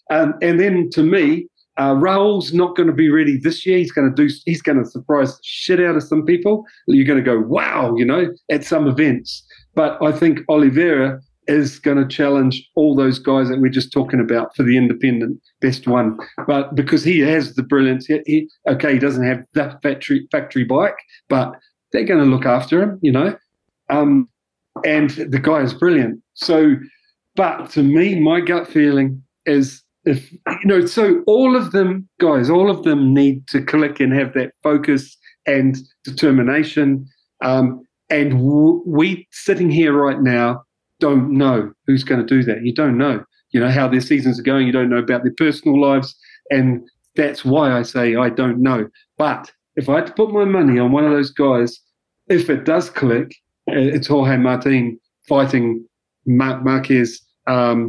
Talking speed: 185 wpm